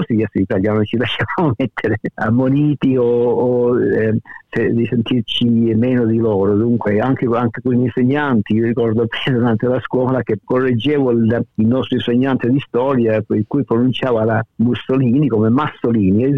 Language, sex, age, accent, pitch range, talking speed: Italian, male, 50-69, native, 110-130 Hz, 160 wpm